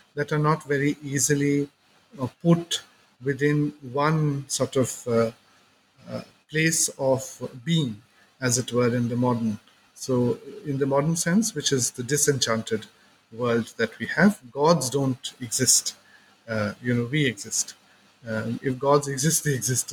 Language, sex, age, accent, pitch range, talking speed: English, male, 50-69, Indian, 120-155 Hz, 145 wpm